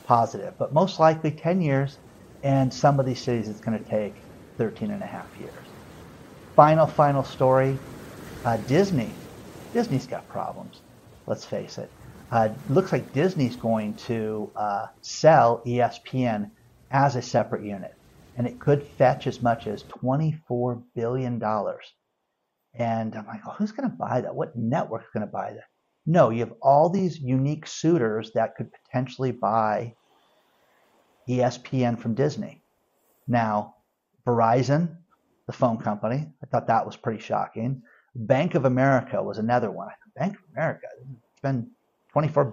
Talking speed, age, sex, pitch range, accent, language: 150 wpm, 50-69, male, 115-145 Hz, American, English